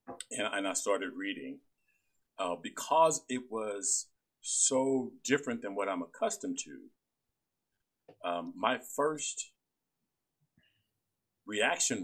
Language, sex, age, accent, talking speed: English, male, 50-69, American, 95 wpm